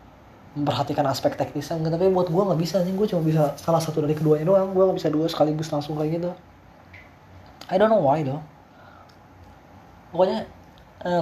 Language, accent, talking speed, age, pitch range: Indonesian, native, 170 wpm, 20-39, 140-165 Hz